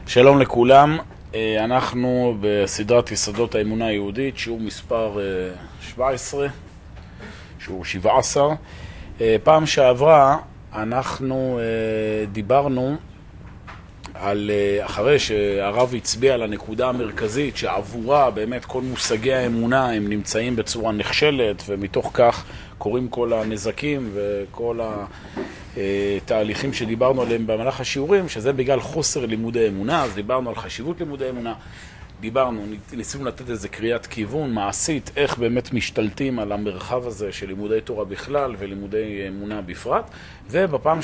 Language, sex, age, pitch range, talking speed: Hebrew, male, 40-59, 105-130 Hz, 110 wpm